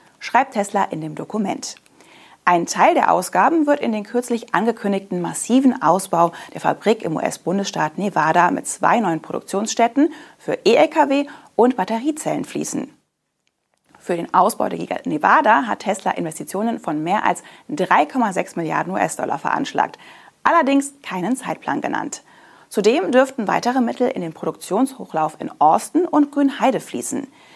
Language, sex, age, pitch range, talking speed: German, female, 30-49, 175-260 Hz, 135 wpm